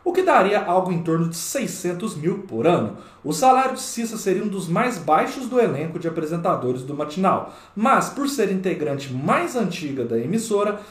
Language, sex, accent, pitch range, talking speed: Portuguese, male, Brazilian, 155-220 Hz, 185 wpm